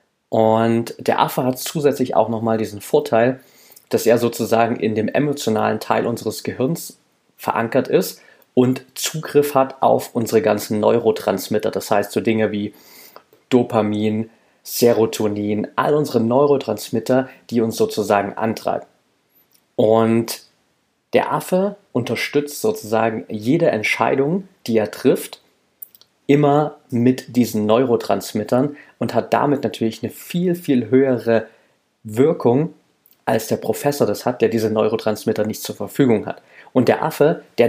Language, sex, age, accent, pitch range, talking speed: German, male, 40-59, German, 110-135 Hz, 125 wpm